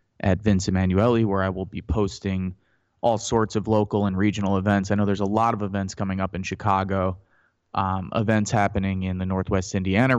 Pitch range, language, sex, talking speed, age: 95-110 Hz, English, male, 195 wpm, 20-39